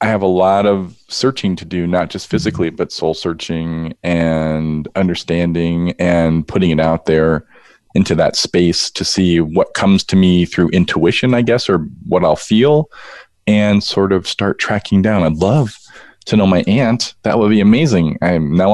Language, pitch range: English, 85-105 Hz